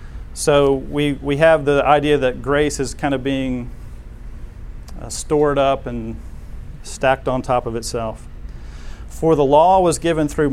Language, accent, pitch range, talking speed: English, American, 115-150 Hz, 150 wpm